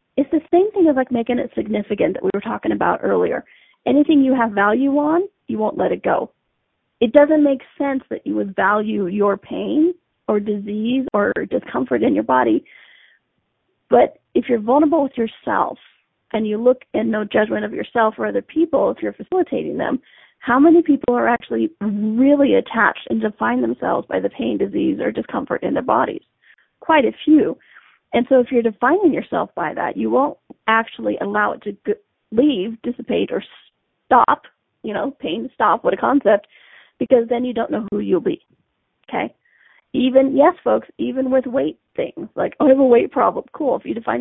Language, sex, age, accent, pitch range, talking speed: English, female, 30-49, American, 215-295 Hz, 185 wpm